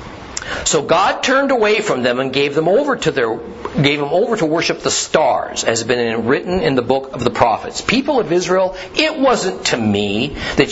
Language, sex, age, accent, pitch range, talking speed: English, male, 50-69, American, 115-190 Hz, 215 wpm